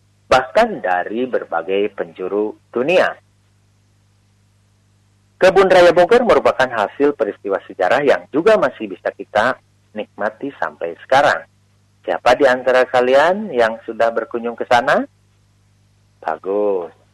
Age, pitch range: 40-59, 100-130 Hz